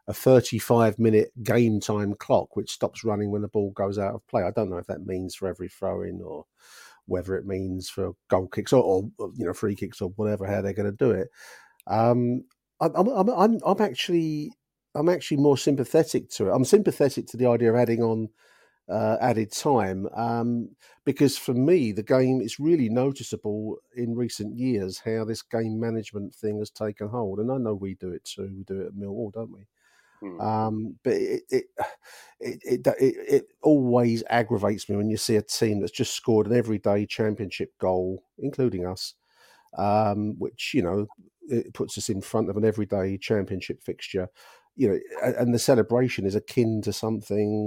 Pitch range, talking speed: 100-120 Hz, 195 wpm